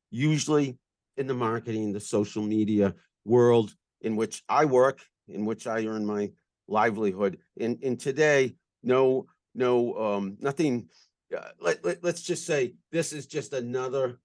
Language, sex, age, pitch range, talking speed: English, male, 50-69, 110-140 Hz, 145 wpm